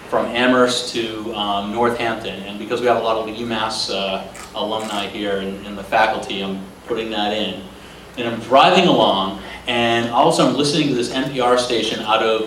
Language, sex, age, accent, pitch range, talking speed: English, male, 40-59, American, 110-140 Hz, 190 wpm